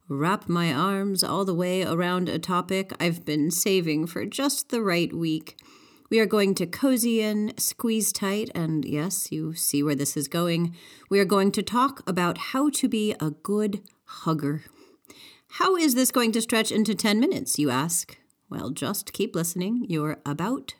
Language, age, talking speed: English, 40-59, 180 wpm